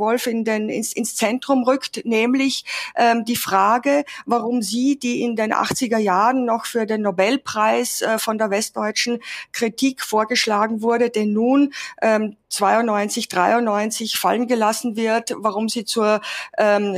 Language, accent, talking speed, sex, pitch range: German, German, 140 wpm, female, 205-235 Hz